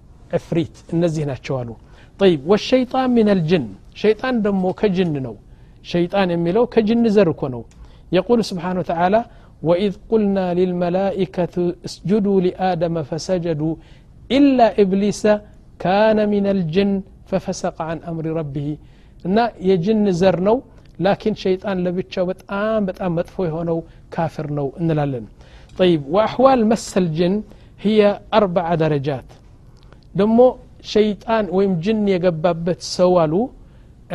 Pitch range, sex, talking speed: 160-205 Hz, male, 100 wpm